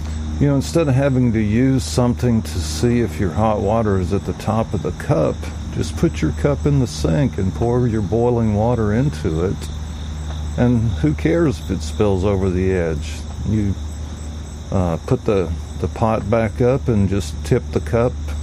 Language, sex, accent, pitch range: English, male, American, 80-110 Hz